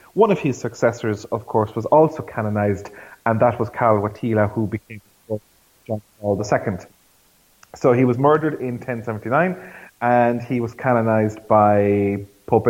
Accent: Irish